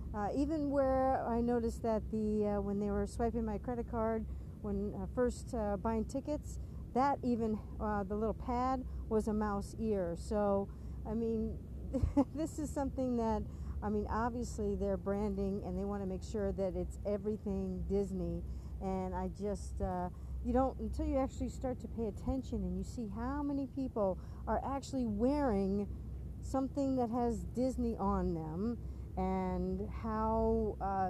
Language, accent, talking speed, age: English, American, 160 wpm, 50-69